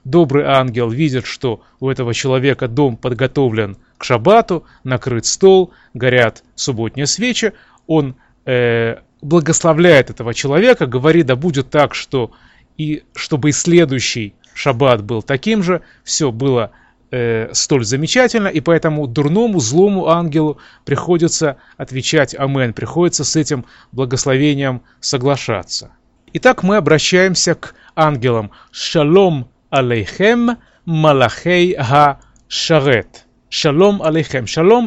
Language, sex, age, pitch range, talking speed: Russian, male, 30-49, 125-170 Hz, 110 wpm